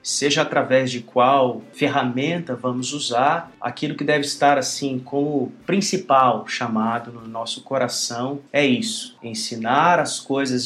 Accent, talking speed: Brazilian, 130 wpm